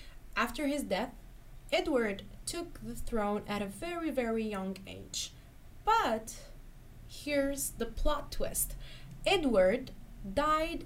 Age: 20-39